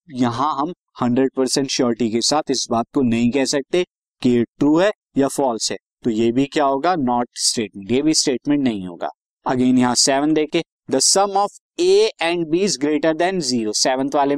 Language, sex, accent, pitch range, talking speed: Hindi, male, native, 135-175 Hz, 155 wpm